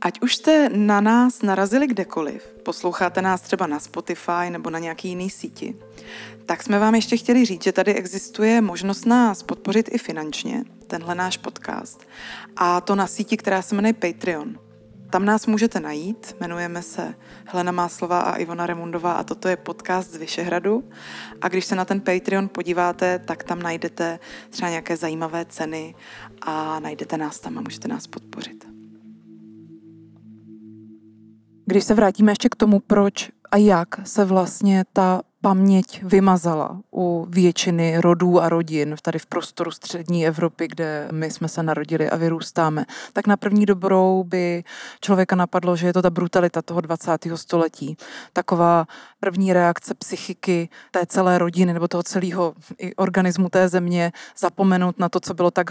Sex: female